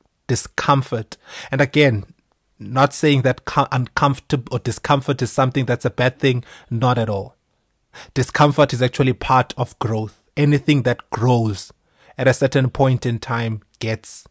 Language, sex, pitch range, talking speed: English, male, 115-130 Hz, 145 wpm